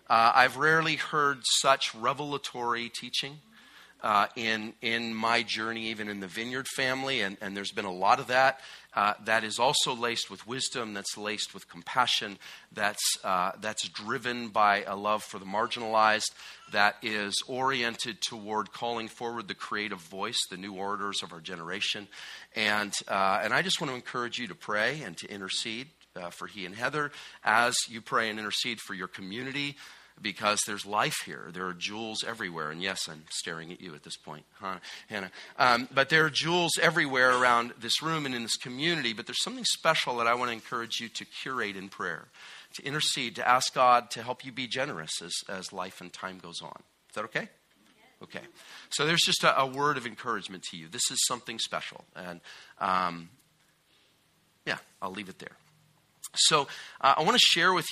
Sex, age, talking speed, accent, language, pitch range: male, 40-59, 190 wpm, American, English, 105-130 Hz